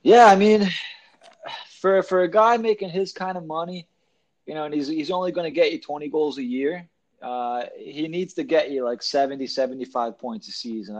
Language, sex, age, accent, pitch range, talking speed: English, male, 20-39, American, 125-165 Hz, 205 wpm